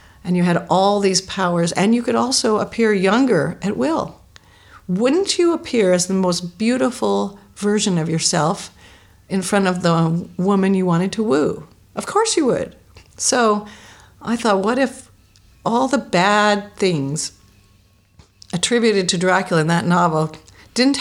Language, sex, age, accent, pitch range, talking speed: English, female, 50-69, American, 165-205 Hz, 150 wpm